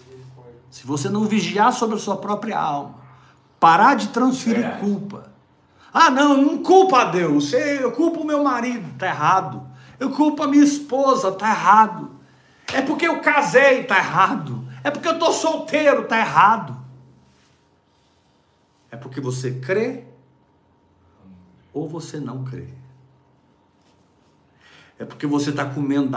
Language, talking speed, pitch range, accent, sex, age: Portuguese, 135 wpm, 130-195 Hz, Brazilian, male, 60-79